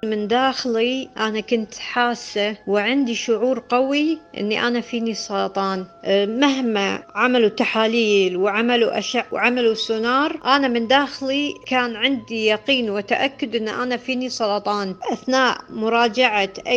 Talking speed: 115 wpm